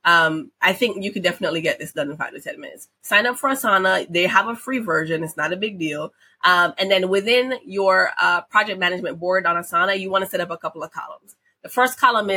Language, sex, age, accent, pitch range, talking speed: English, female, 20-39, American, 175-230 Hz, 245 wpm